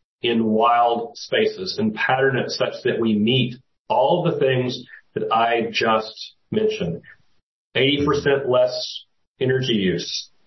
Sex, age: male, 40-59